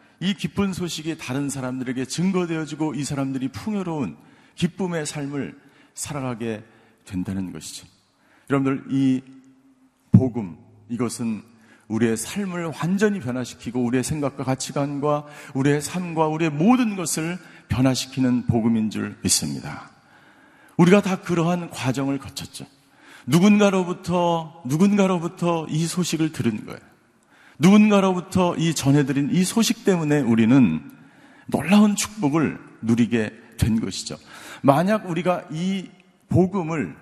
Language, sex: Korean, male